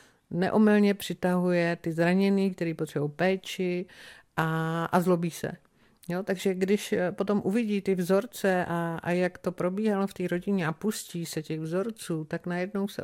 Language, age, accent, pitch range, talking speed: Czech, 50-69, native, 170-200 Hz, 155 wpm